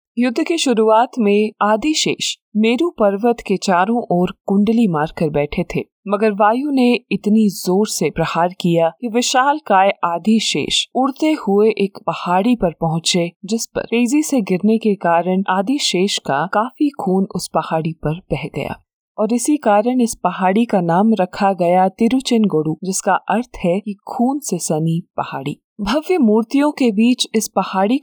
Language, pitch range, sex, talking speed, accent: Hindi, 185-240 Hz, female, 155 wpm, native